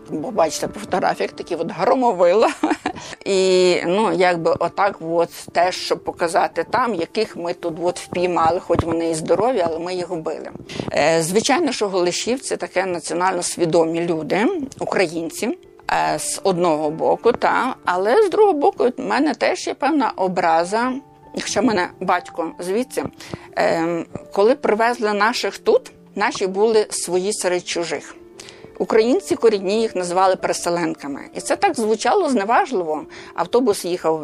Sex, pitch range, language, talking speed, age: female, 175-250 Hz, Ukrainian, 140 wpm, 50-69